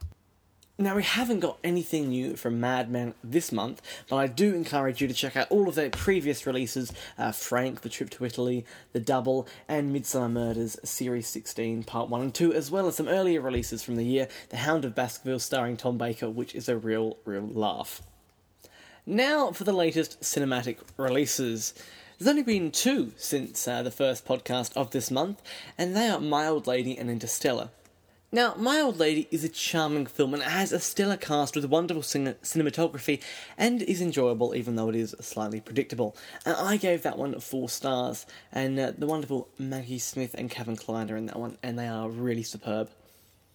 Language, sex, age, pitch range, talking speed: English, male, 10-29, 120-155 Hz, 190 wpm